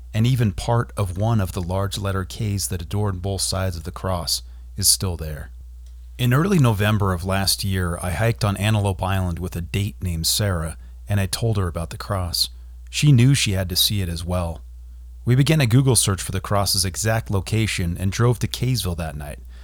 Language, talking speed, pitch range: English, 210 wpm, 85-105 Hz